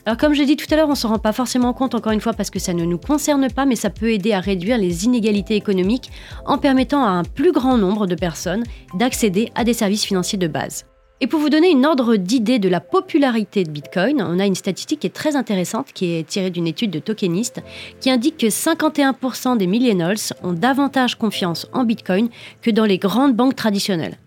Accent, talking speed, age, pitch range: French, 230 wpm, 30-49, 190-260 Hz